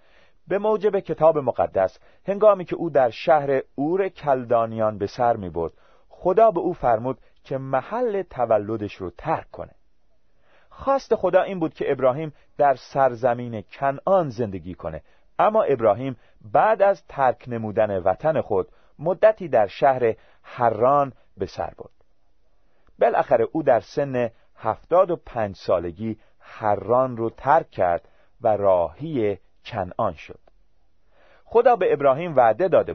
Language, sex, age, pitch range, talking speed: Persian, male, 40-59, 110-180 Hz, 125 wpm